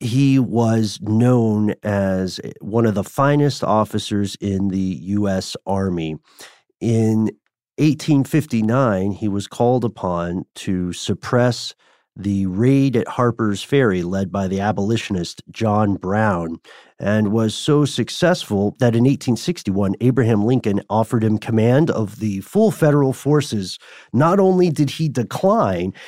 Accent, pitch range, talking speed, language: American, 105-135 Hz, 125 wpm, English